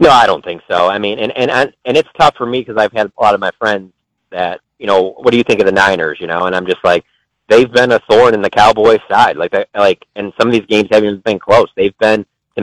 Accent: American